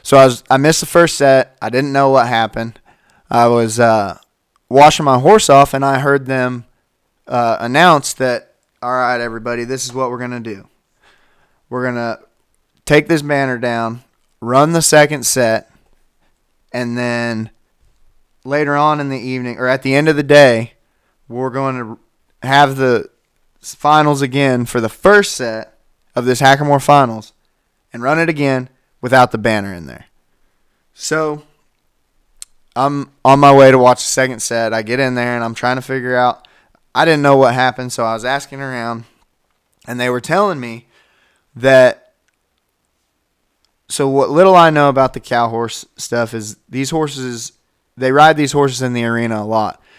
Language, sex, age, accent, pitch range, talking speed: English, male, 20-39, American, 120-140 Hz, 175 wpm